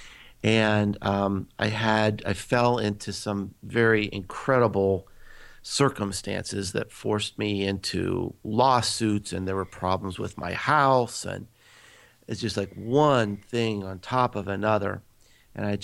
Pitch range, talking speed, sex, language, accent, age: 100-120 Hz, 135 wpm, male, English, American, 50-69